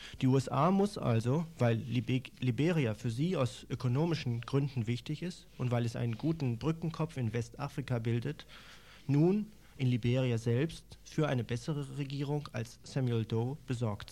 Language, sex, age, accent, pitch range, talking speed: German, male, 40-59, German, 120-150 Hz, 145 wpm